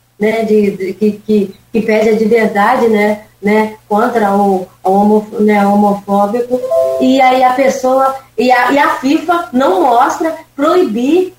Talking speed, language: 165 wpm, Portuguese